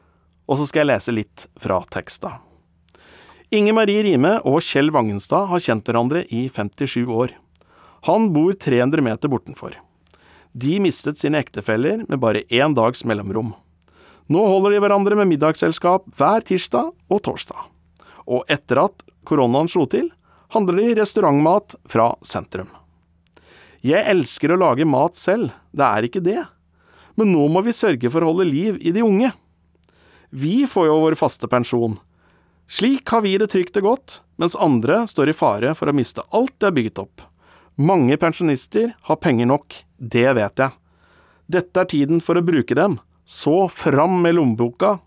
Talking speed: 160 wpm